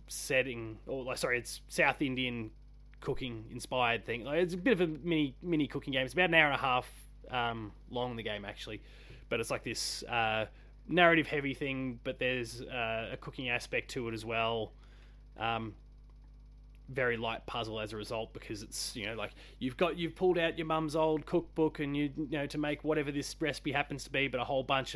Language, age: English, 20-39